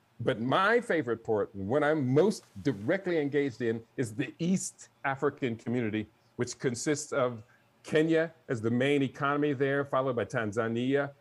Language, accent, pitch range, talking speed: Russian, American, 120-160 Hz, 145 wpm